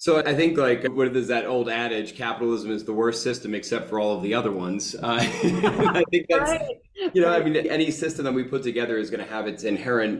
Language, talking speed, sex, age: English, 240 wpm, male, 30-49